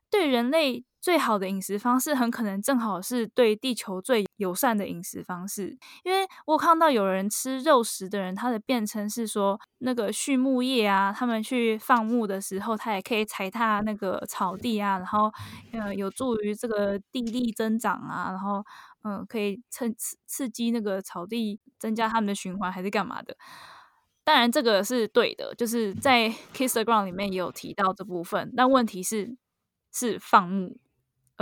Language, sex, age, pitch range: Chinese, female, 10-29, 195-245 Hz